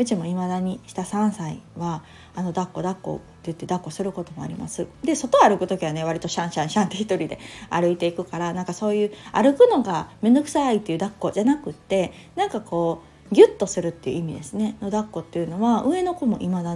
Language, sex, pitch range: Japanese, female, 170-235 Hz